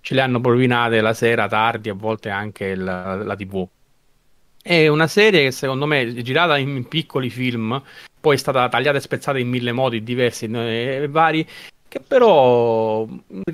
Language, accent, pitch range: Italian, native, 110-135 Hz